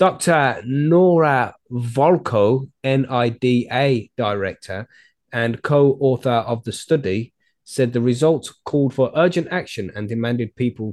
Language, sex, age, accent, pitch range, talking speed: English, male, 20-39, British, 110-140 Hz, 110 wpm